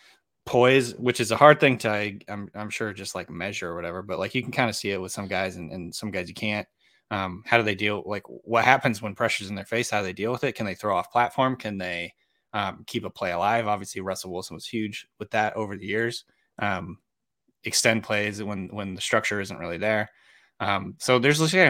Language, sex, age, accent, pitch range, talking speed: English, male, 20-39, American, 100-125 Hz, 240 wpm